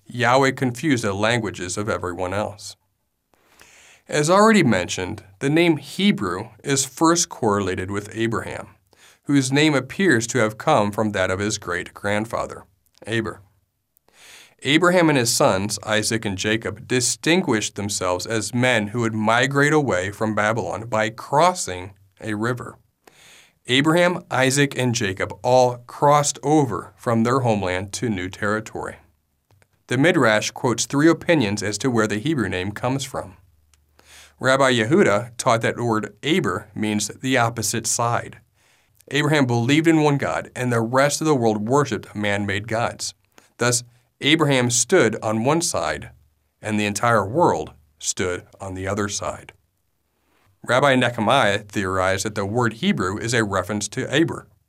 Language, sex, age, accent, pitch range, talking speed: English, male, 40-59, American, 100-130 Hz, 140 wpm